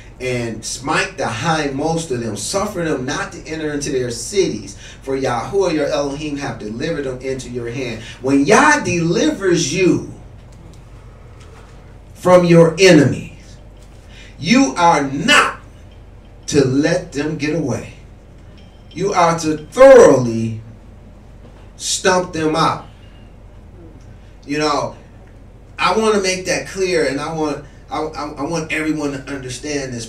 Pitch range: 115-155 Hz